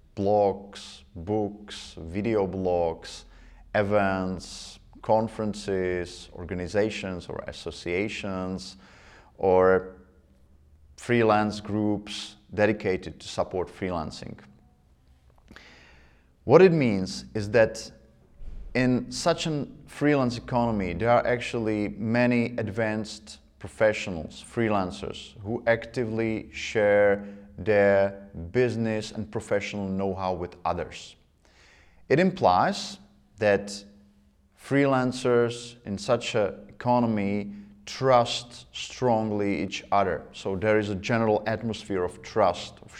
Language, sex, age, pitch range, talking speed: Czech, male, 30-49, 95-115 Hz, 90 wpm